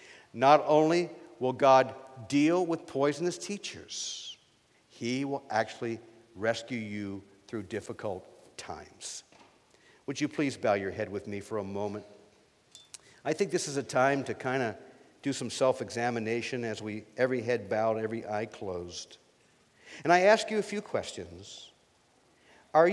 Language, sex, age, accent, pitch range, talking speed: English, male, 50-69, American, 110-155 Hz, 145 wpm